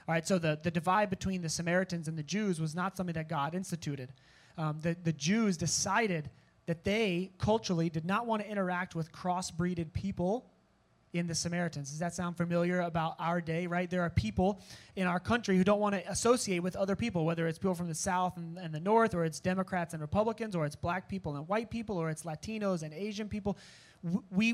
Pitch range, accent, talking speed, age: 160-195 Hz, American, 215 wpm, 30-49